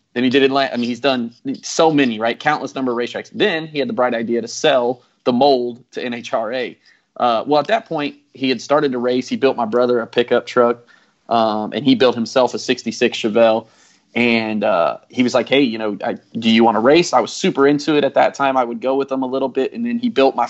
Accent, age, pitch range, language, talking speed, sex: American, 20-39, 115-140 Hz, English, 255 wpm, male